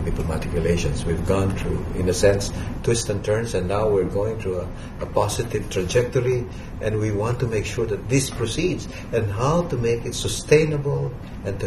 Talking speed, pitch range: 185 wpm, 90-115 Hz